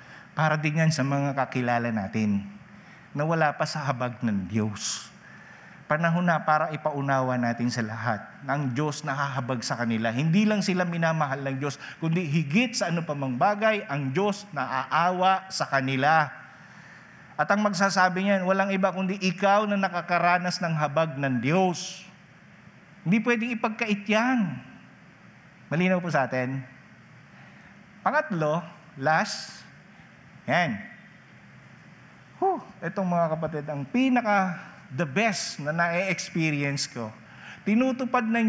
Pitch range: 140-185 Hz